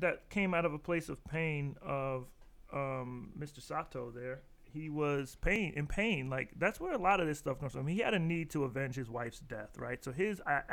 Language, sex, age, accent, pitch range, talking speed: English, male, 30-49, American, 130-150 Hz, 230 wpm